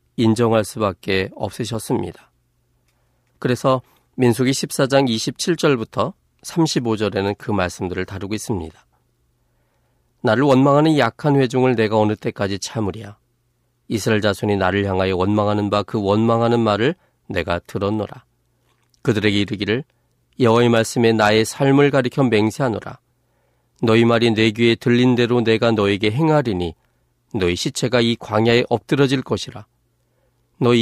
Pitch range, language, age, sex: 105-130 Hz, Korean, 40-59, male